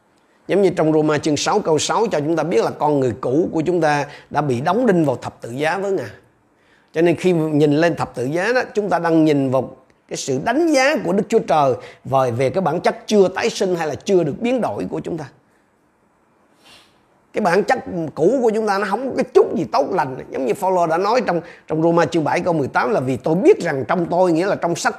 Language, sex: Vietnamese, male